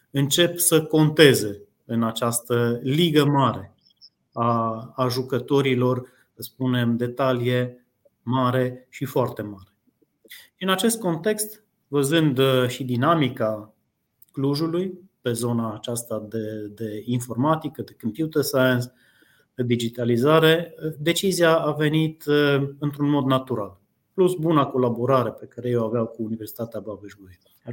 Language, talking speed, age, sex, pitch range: Romanian, 115 wpm, 30-49, male, 120-160 Hz